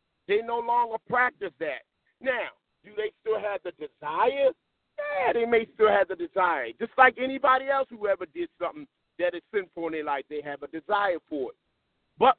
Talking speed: 195 wpm